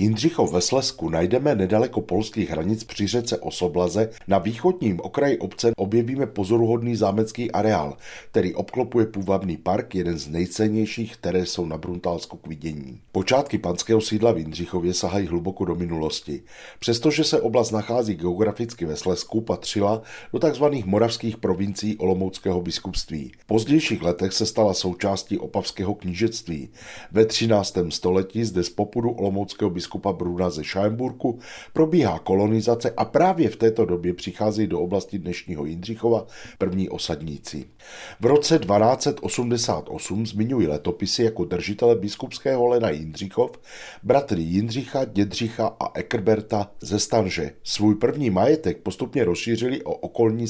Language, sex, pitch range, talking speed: Czech, male, 90-115 Hz, 130 wpm